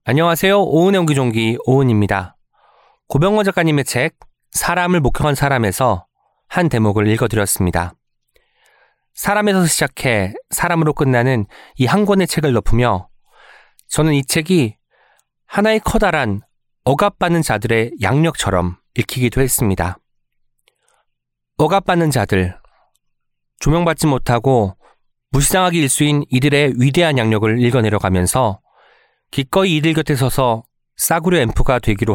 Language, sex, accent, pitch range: Korean, male, native, 105-160 Hz